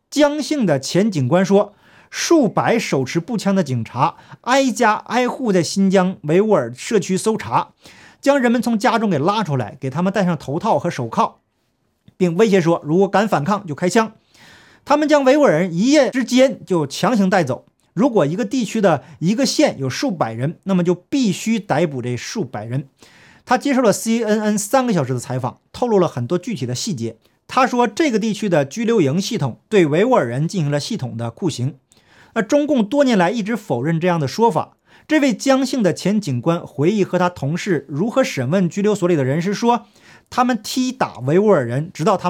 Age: 50-69